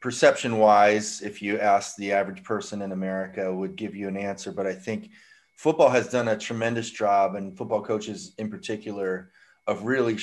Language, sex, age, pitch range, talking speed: English, male, 30-49, 95-110 Hz, 180 wpm